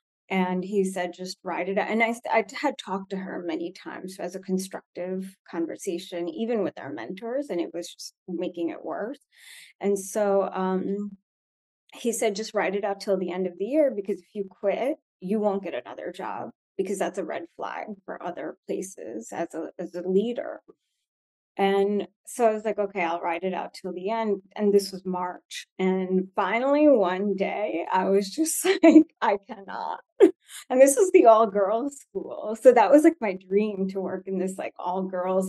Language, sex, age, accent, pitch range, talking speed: English, female, 20-39, American, 185-225 Hz, 195 wpm